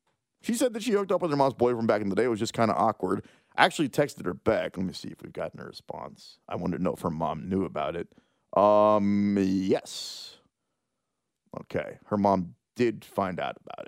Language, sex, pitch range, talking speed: English, male, 95-145 Hz, 225 wpm